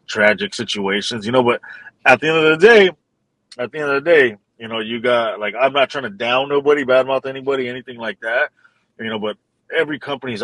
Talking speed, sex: 220 wpm, male